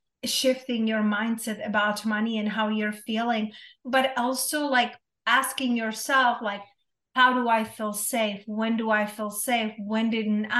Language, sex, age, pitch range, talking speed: English, female, 30-49, 215-250 Hz, 155 wpm